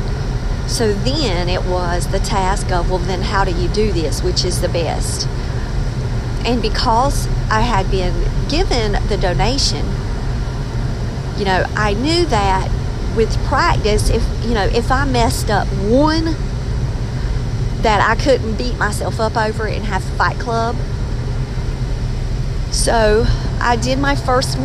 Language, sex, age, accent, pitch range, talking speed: English, female, 40-59, American, 115-125 Hz, 140 wpm